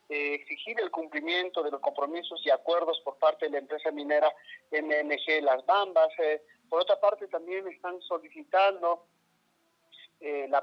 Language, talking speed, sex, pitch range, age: Spanish, 135 wpm, male, 150-185 Hz, 40-59